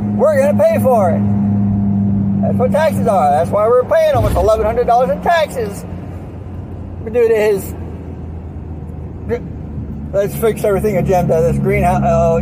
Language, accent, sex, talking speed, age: English, American, male, 130 wpm, 60-79